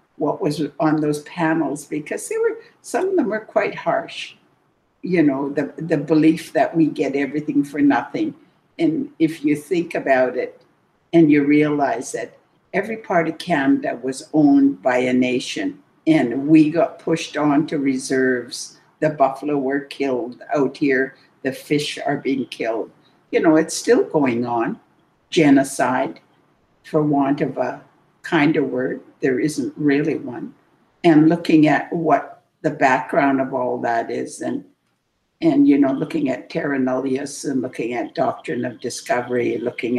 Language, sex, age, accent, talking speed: English, female, 60-79, American, 155 wpm